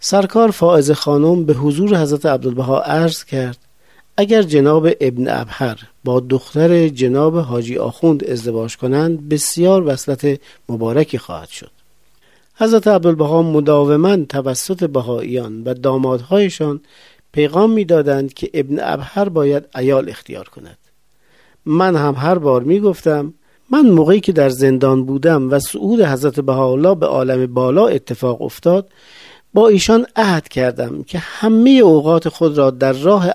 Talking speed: 130 wpm